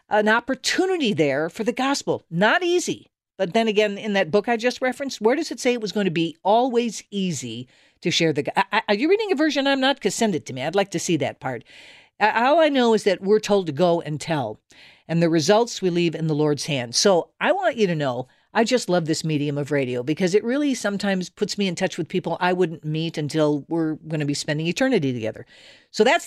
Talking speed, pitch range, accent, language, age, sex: 240 wpm, 155-220 Hz, American, English, 50-69, female